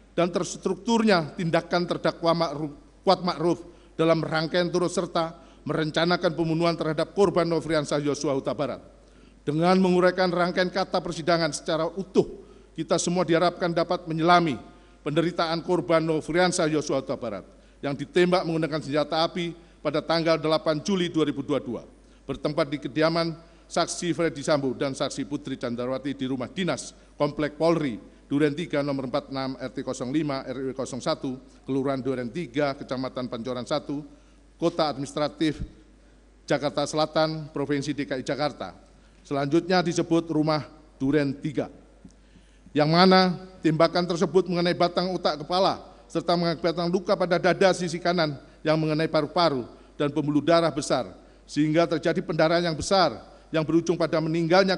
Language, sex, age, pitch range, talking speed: Indonesian, male, 50-69, 150-175 Hz, 125 wpm